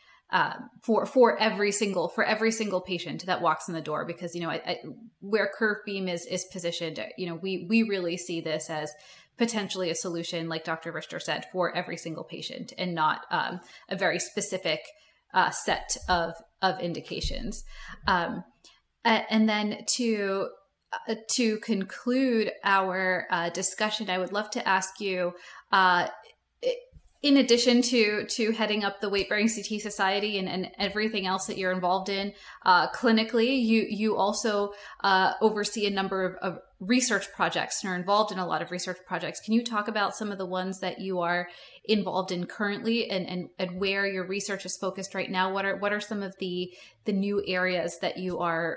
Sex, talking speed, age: female, 185 wpm, 20-39